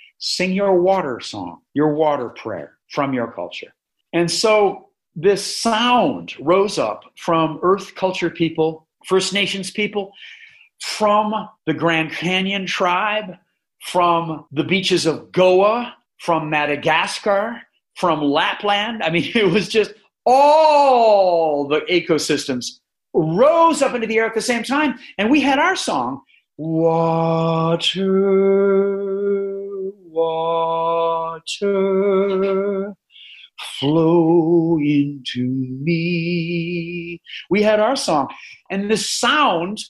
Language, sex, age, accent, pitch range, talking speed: English, male, 50-69, American, 165-220 Hz, 105 wpm